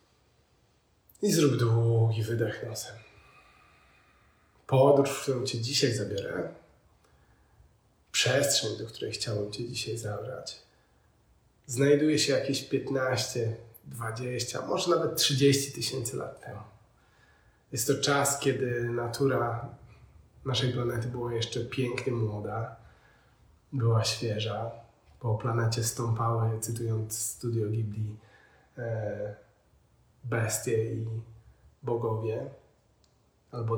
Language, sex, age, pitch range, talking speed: Polish, male, 30-49, 110-130 Hz, 95 wpm